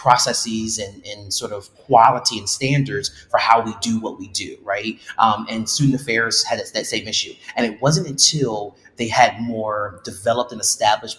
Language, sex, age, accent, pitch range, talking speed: English, male, 30-49, American, 105-130 Hz, 180 wpm